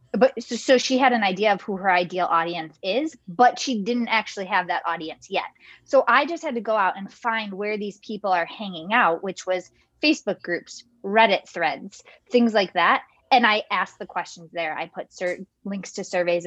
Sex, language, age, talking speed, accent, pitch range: female, English, 20-39, 205 wpm, American, 170-225 Hz